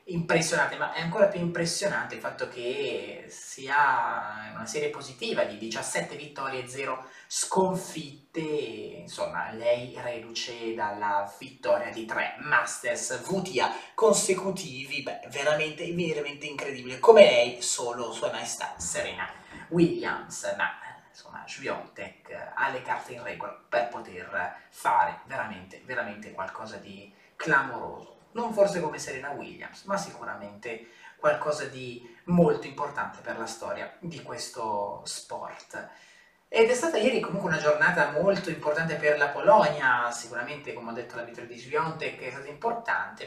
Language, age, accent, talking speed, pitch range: Italian, 30-49, native, 135 wpm, 130-195 Hz